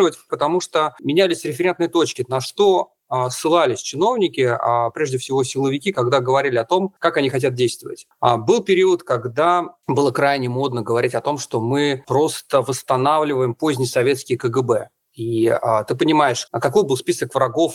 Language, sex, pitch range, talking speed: Russian, male, 125-170 Hz, 160 wpm